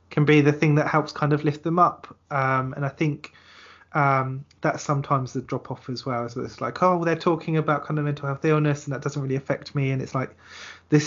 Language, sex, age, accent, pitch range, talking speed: English, male, 20-39, British, 130-150 Hz, 260 wpm